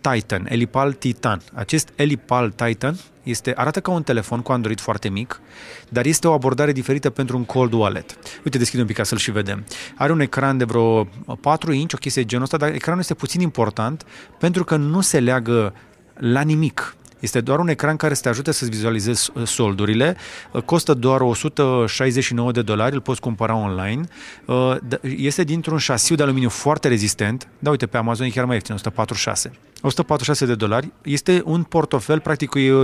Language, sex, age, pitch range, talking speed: Romanian, male, 30-49, 115-145 Hz, 185 wpm